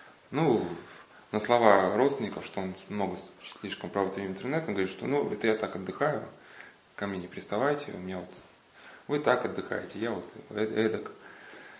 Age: 20-39